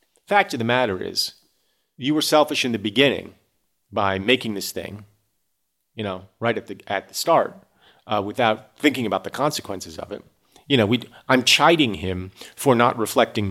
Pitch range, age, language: 105-145 Hz, 40-59, English